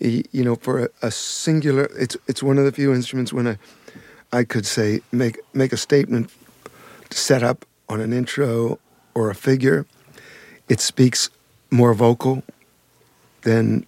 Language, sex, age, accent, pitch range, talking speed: English, male, 60-79, American, 115-140 Hz, 150 wpm